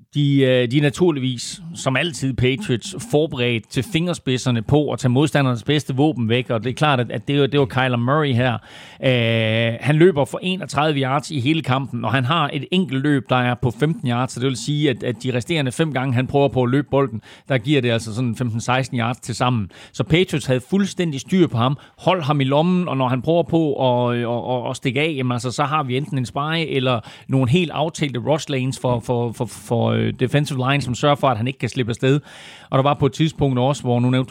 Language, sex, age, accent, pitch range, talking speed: Danish, male, 40-59, native, 125-150 Hz, 235 wpm